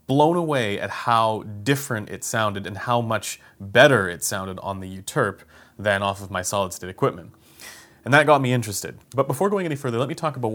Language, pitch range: English, 95-115 Hz